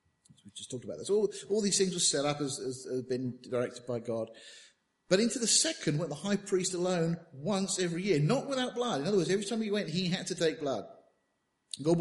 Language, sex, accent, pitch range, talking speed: English, male, British, 135-175 Hz, 230 wpm